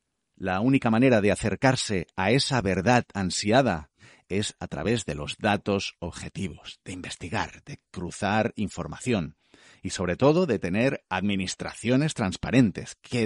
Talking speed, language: 130 wpm, Spanish